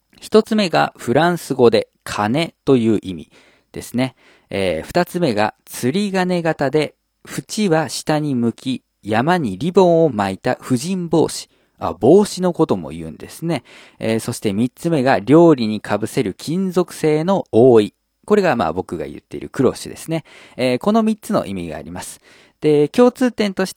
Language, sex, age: Japanese, male, 40-59